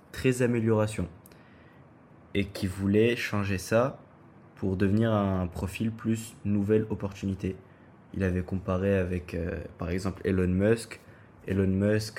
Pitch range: 95-110 Hz